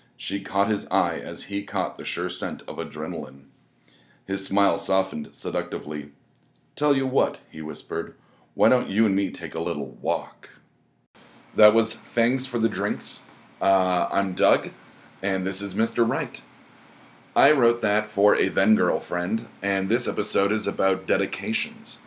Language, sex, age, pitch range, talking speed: English, male, 30-49, 95-110 Hz, 150 wpm